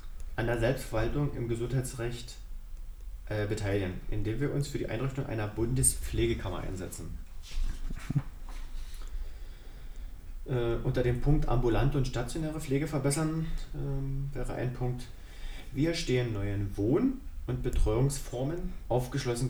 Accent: German